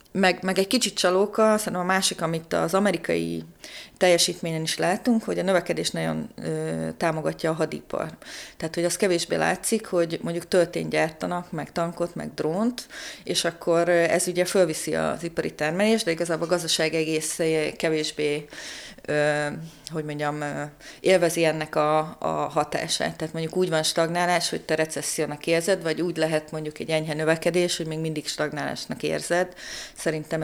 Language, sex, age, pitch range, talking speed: Hungarian, female, 30-49, 155-180 Hz, 155 wpm